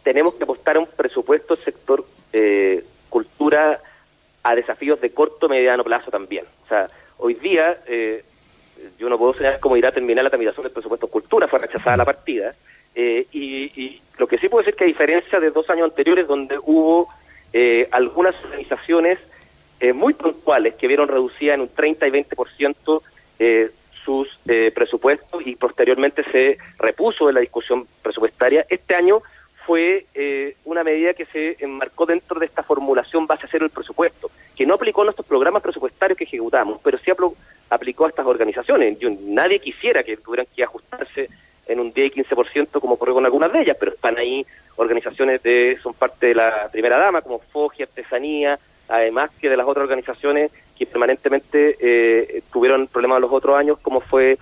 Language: Spanish